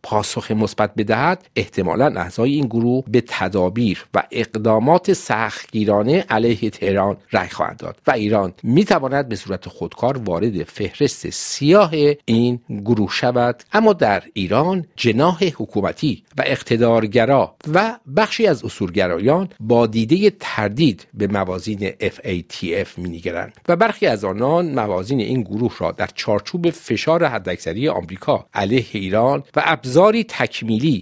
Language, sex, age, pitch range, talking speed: Persian, male, 50-69, 105-140 Hz, 125 wpm